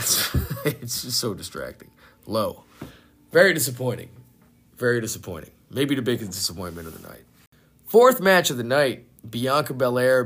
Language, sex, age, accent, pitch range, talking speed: English, male, 30-49, American, 115-145 Hz, 135 wpm